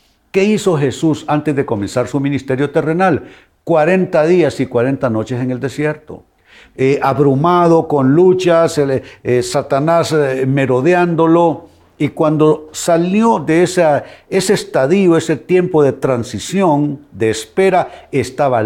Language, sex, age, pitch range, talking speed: Spanish, male, 60-79, 110-170 Hz, 125 wpm